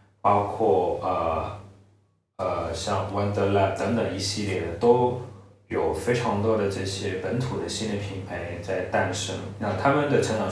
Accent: native